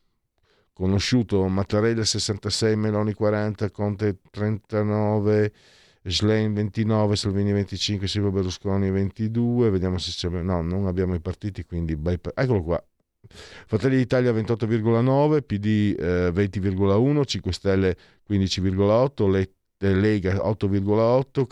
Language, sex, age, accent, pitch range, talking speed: Italian, male, 50-69, native, 90-110 Hz, 100 wpm